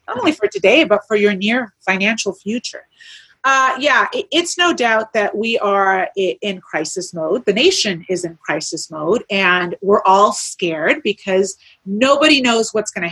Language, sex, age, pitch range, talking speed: English, female, 30-49, 195-280 Hz, 170 wpm